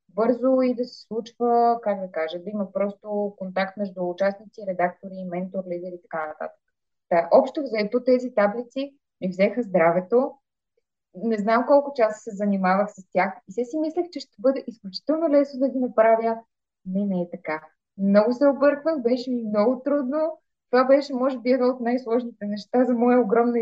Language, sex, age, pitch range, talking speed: Bulgarian, female, 20-39, 190-245 Hz, 180 wpm